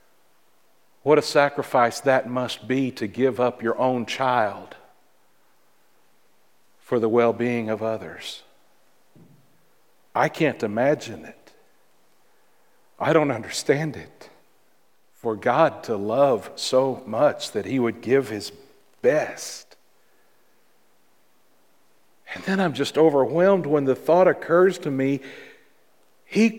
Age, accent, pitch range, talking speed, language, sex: 60-79, American, 120-175 Hz, 110 wpm, English, male